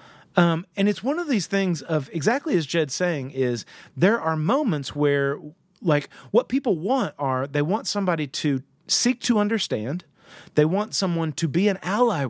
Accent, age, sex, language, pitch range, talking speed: American, 30-49, male, English, 135-180 Hz, 175 wpm